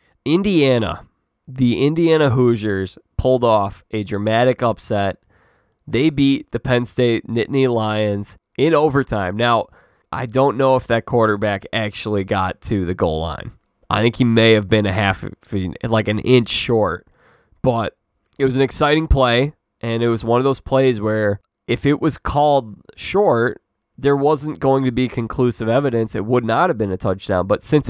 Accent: American